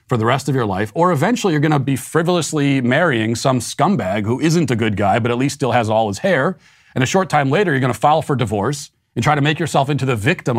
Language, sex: English, male